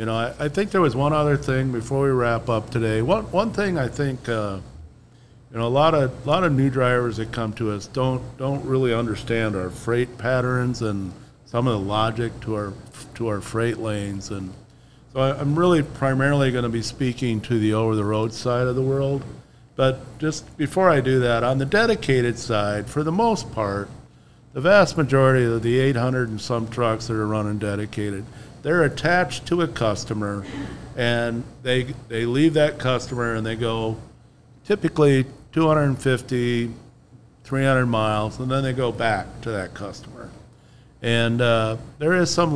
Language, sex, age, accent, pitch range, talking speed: English, male, 50-69, American, 115-135 Hz, 180 wpm